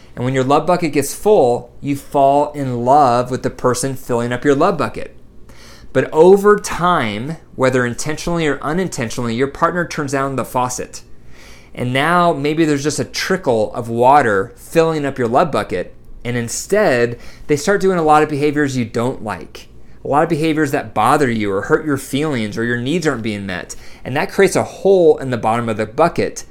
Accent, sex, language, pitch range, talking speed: American, male, English, 120-150 Hz, 195 wpm